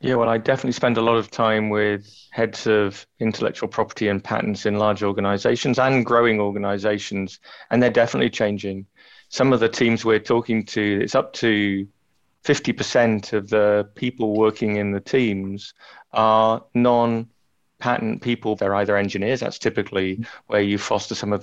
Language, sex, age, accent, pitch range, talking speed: English, male, 30-49, British, 105-115 Hz, 160 wpm